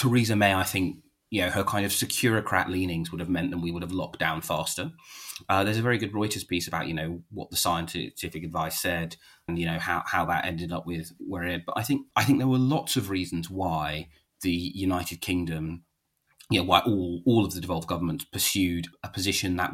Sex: male